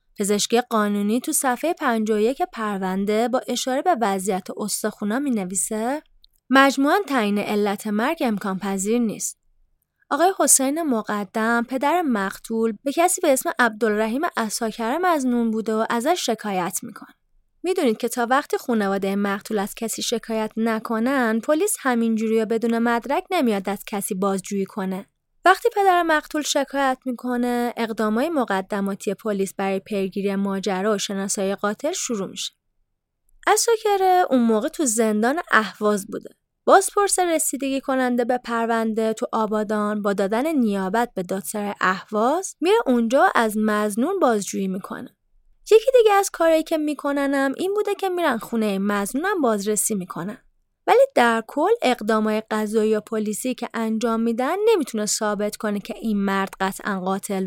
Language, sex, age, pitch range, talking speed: Persian, female, 20-39, 205-270 Hz, 140 wpm